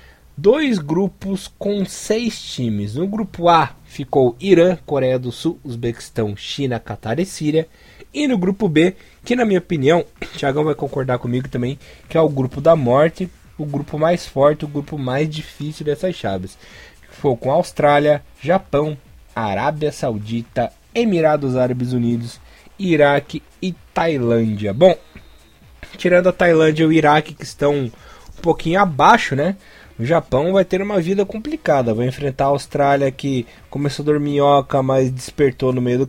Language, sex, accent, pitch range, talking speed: Portuguese, male, Brazilian, 130-165 Hz, 155 wpm